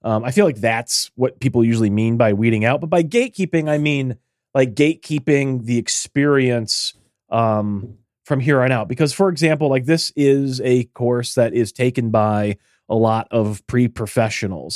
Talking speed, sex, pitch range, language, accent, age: 175 wpm, male, 115-155 Hz, English, American, 30-49